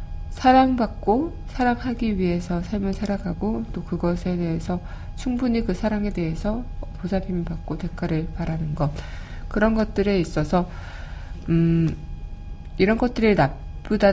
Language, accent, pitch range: Korean, native, 155-195 Hz